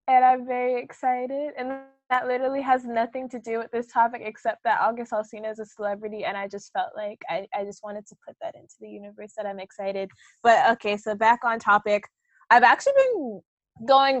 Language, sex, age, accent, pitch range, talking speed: English, female, 20-39, American, 205-255 Hz, 205 wpm